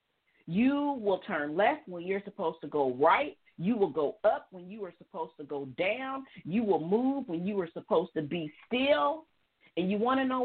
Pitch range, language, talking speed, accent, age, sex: 155-220 Hz, English, 205 wpm, American, 40-59, female